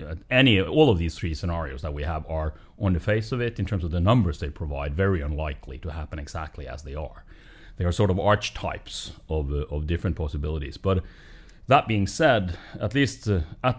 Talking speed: 200 wpm